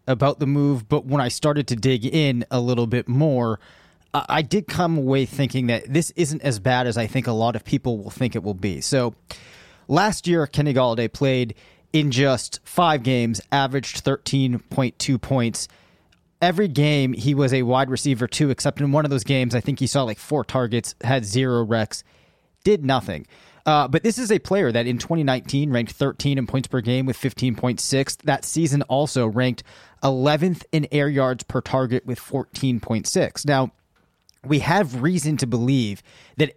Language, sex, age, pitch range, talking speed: English, male, 30-49, 120-145 Hz, 185 wpm